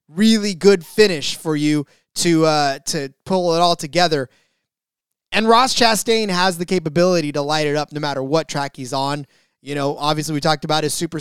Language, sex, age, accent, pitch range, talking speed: English, male, 20-39, American, 160-200 Hz, 195 wpm